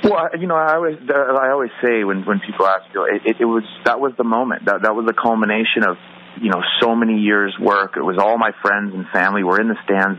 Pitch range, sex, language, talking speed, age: 95-110 Hz, male, English, 260 wpm, 30-49